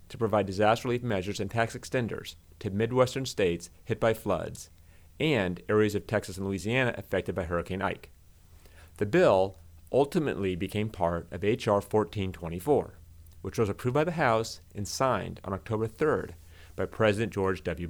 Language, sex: English, male